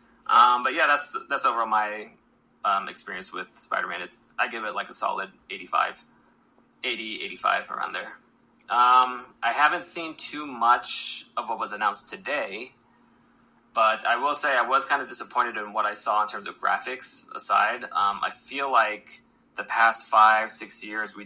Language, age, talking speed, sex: English, 20-39, 175 wpm, male